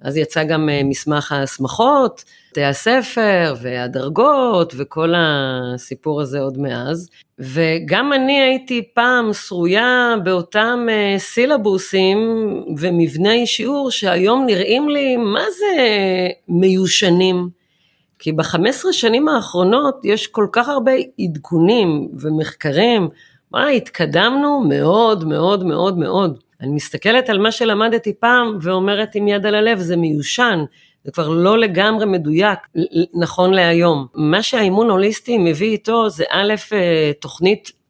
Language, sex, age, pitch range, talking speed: Hebrew, female, 40-59, 160-230 Hz, 115 wpm